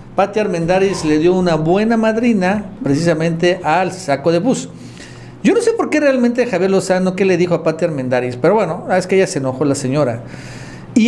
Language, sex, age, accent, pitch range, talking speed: Spanish, male, 50-69, Mexican, 145-215 Hz, 195 wpm